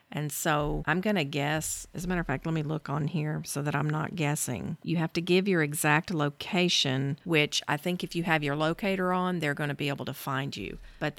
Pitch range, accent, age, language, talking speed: 145-170 Hz, American, 50-69, English, 245 wpm